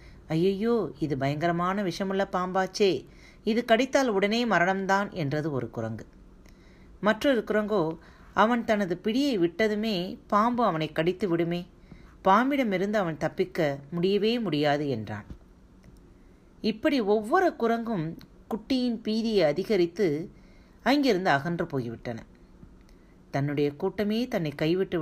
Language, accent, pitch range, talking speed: Tamil, native, 150-215 Hz, 100 wpm